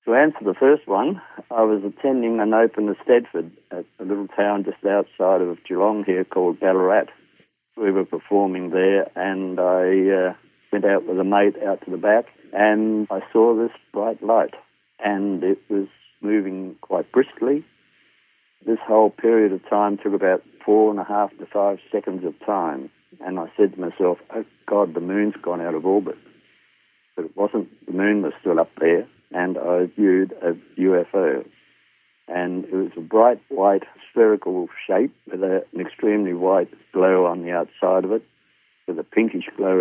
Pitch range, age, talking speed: 90-105 Hz, 60-79, 175 wpm